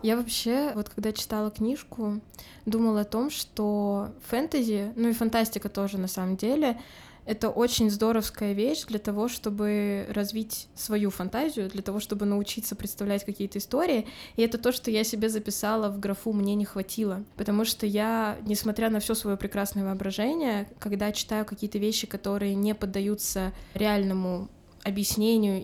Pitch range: 205-235 Hz